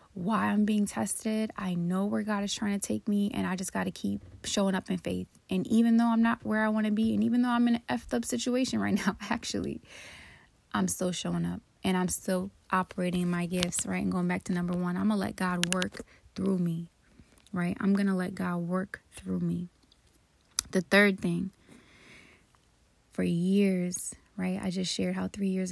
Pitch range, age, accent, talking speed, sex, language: 180-215 Hz, 20-39, American, 210 wpm, female, English